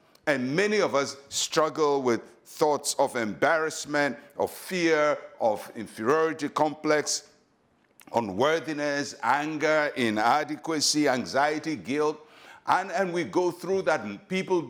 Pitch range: 130-175 Hz